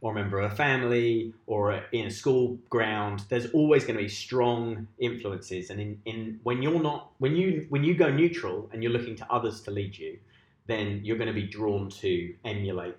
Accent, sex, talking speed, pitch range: British, male, 215 wpm, 100-135 Hz